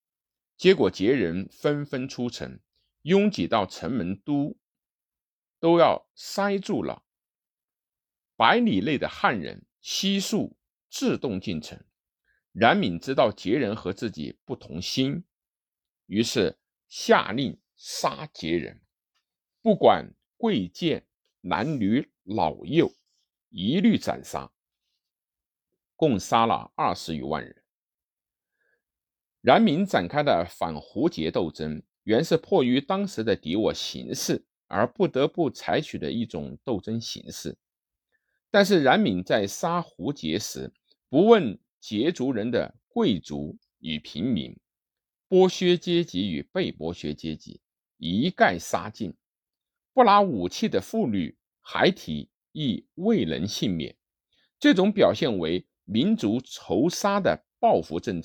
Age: 50-69